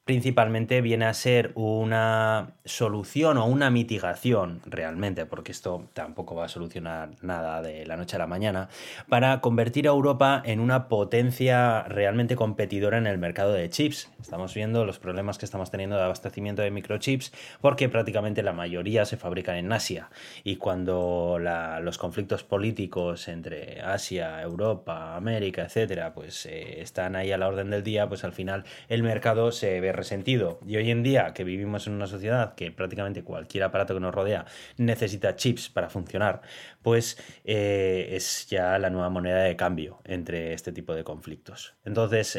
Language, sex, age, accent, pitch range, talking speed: Spanish, male, 30-49, Spanish, 90-115 Hz, 170 wpm